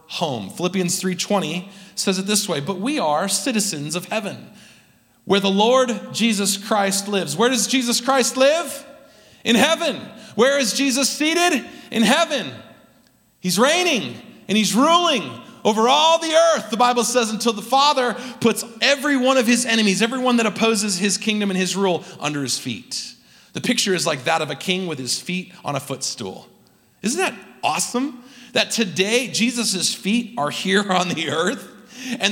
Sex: male